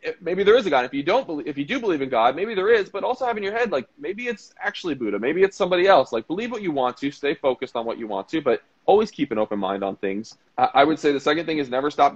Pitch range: 115-180 Hz